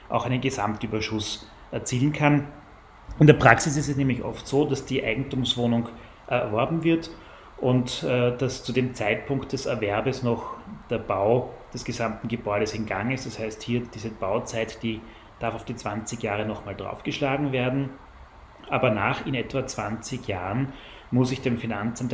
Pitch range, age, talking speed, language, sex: 110-135 Hz, 30-49, 165 wpm, German, male